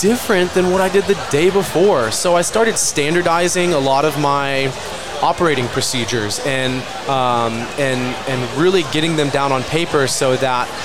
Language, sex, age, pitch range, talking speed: English, male, 20-39, 130-155 Hz, 165 wpm